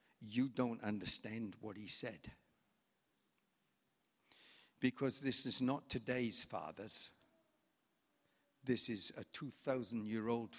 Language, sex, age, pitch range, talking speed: English, male, 60-79, 110-125 Hz, 90 wpm